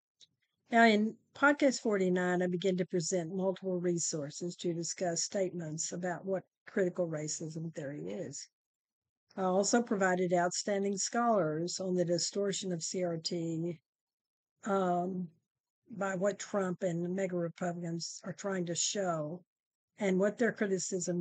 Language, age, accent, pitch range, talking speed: English, 50-69, American, 175-205 Hz, 120 wpm